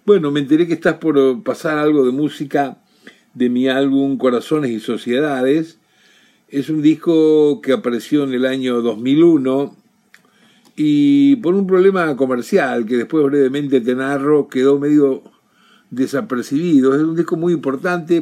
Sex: male